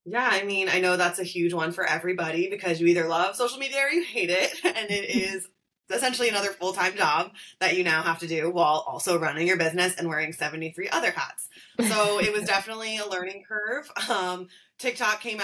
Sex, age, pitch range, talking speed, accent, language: female, 20-39, 165-195 Hz, 210 wpm, American, English